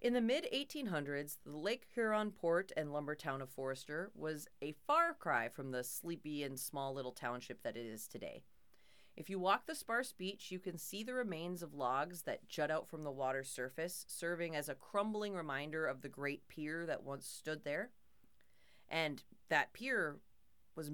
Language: English